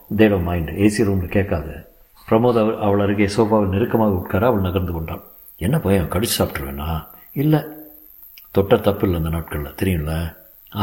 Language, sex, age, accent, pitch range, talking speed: Tamil, male, 60-79, native, 95-120 Hz, 140 wpm